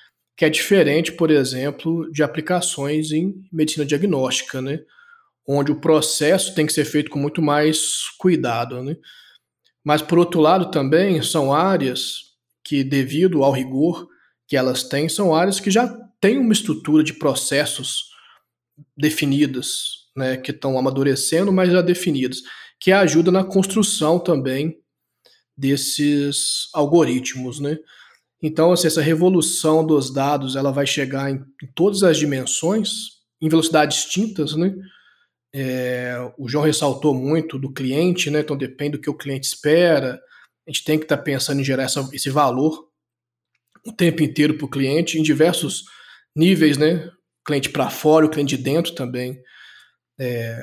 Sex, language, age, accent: male, Portuguese, 20-39, Brazilian